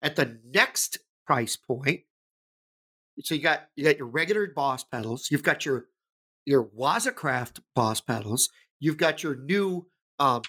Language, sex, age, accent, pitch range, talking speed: English, male, 50-69, American, 130-180 Hz, 150 wpm